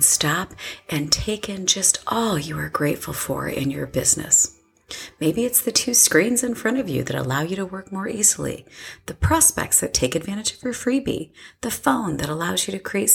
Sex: female